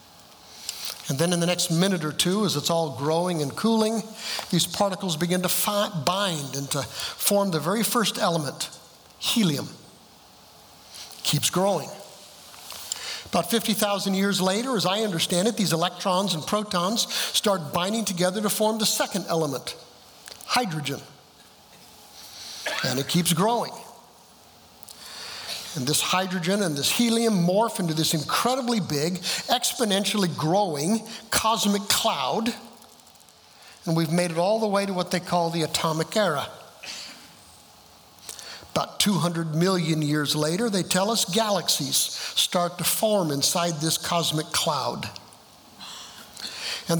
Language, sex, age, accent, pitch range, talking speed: English, male, 60-79, American, 165-210 Hz, 130 wpm